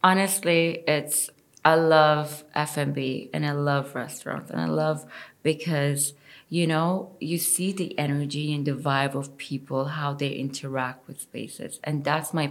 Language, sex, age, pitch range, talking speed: English, female, 20-39, 140-160 Hz, 155 wpm